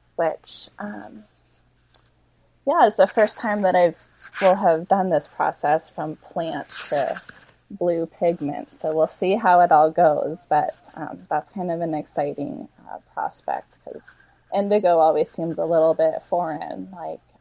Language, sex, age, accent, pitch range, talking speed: English, female, 20-39, American, 165-210 Hz, 150 wpm